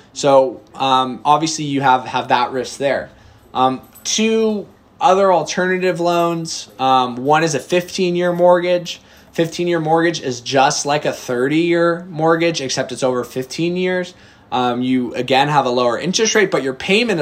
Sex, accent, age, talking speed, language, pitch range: male, American, 20-39, 165 wpm, English, 120-165 Hz